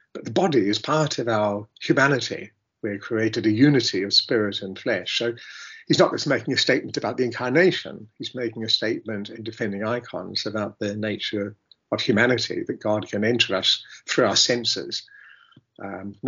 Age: 50-69